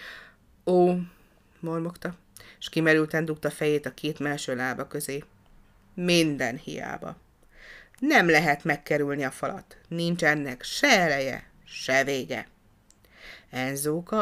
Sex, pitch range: female, 145-180 Hz